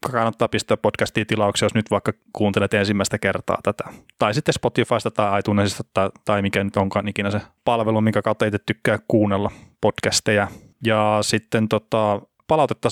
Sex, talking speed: male, 160 wpm